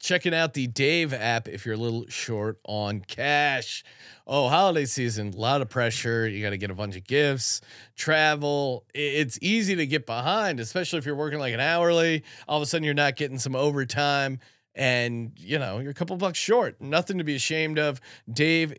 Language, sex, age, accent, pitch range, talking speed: English, male, 30-49, American, 125-165 Hz, 200 wpm